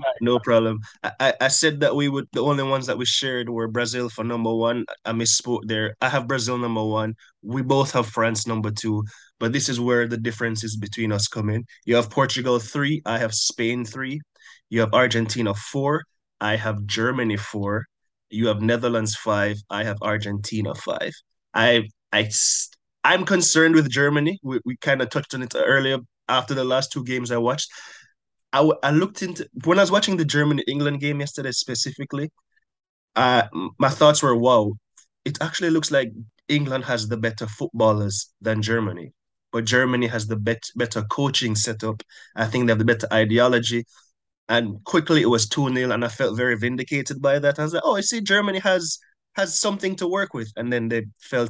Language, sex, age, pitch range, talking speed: English, male, 20-39, 110-140 Hz, 190 wpm